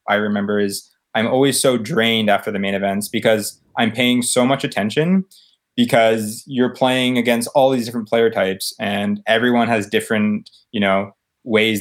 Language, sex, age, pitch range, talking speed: English, male, 20-39, 105-125 Hz, 170 wpm